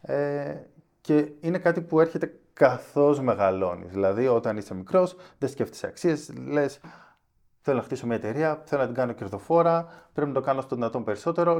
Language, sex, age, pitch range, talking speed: Greek, male, 20-39, 110-165 Hz, 170 wpm